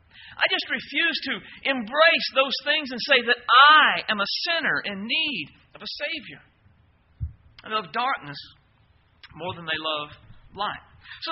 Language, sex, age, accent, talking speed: English, male, 50-69, American, 150 wpm